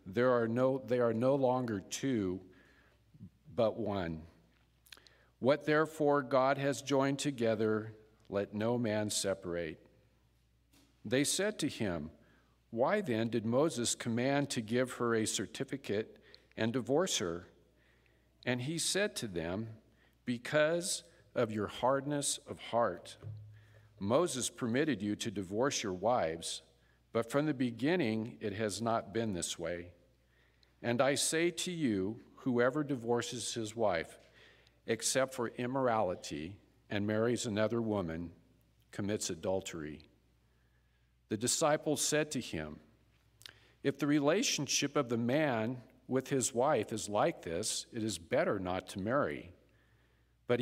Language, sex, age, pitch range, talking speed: English, male, 50-69, 95-130 Hz, 125 wpm